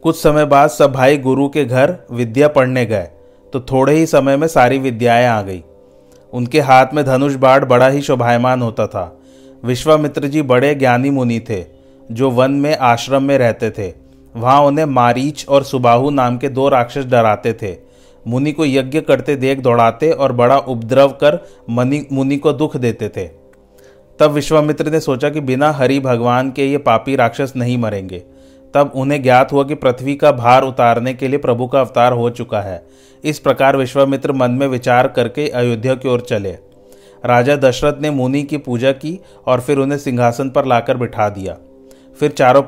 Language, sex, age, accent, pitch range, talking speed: Hindi, male, 40-59, native, 120-140 Hz, 180 wpm